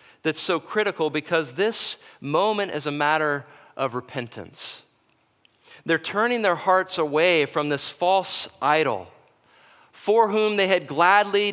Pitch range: 140-180 Hz